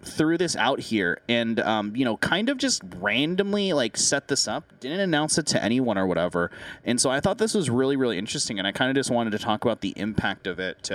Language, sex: English, male